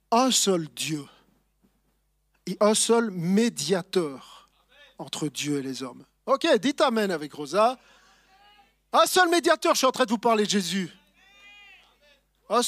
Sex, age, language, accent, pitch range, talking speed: male, 40-59, French, French, 155-225 Hz, 150 wpm